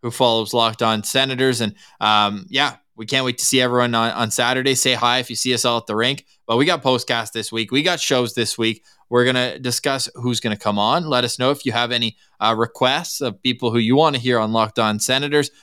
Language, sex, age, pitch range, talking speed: English, male, 20-39, 120-150 Hz, 255 wpm